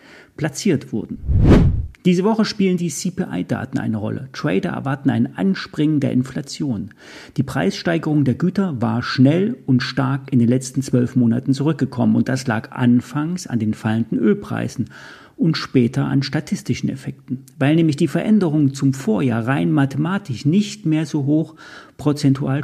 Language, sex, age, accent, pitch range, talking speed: German, male, 40-59, German, 130-170 Hz, 145 wpm